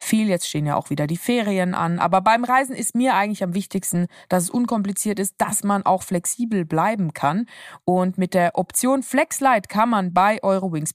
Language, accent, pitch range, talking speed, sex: German, German, 165-210 Hz, 195 wpm, female